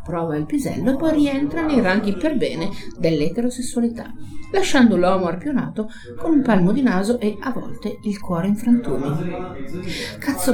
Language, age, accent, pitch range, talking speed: Italian, 50-69, native, 165-250 Hz, 155 wpm